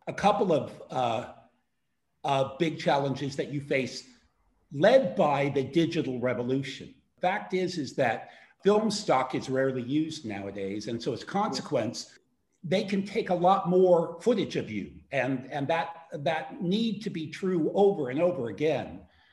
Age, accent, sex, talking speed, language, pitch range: 50-69, American, male, 155 wpm, English, 135-185 Hz